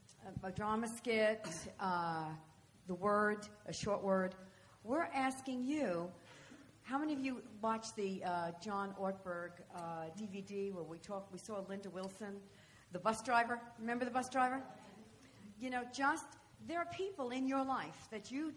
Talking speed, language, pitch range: 160 wpm, English, 195-260 Hz